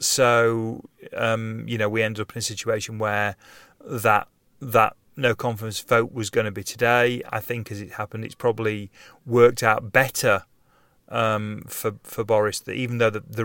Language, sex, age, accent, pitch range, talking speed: English, male, 30-49, British, 110-120 Hz, 180 wpm